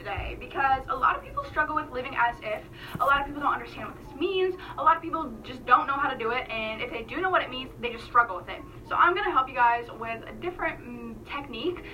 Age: 10-29